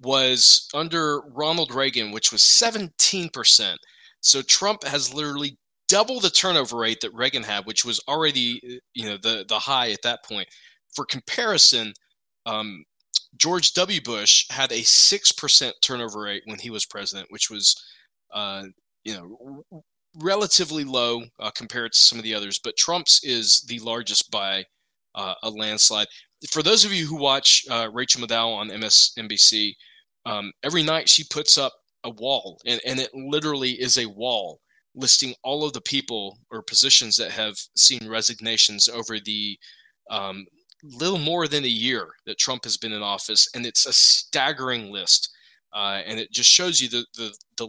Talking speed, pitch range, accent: 170 wpm, 110-145 Hz, American